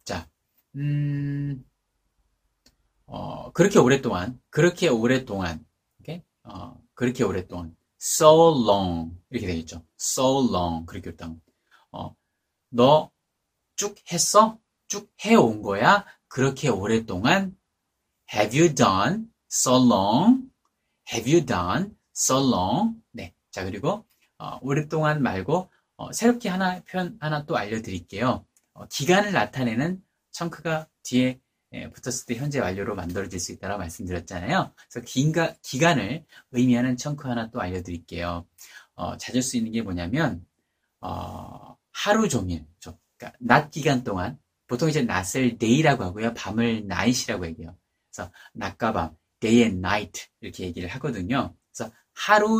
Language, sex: Korean, male